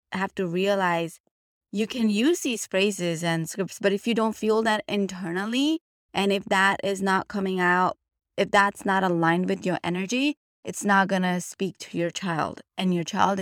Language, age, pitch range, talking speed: English, 20-39, 175-205 Hz, 190 wpm